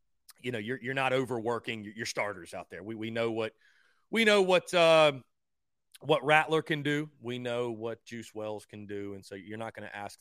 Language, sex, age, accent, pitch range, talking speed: English, male, 30-49, American, 105-140 Hz, 210 wpm